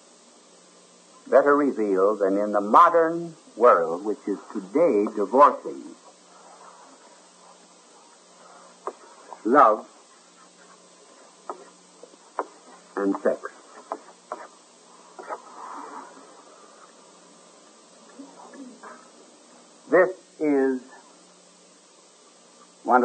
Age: 60-79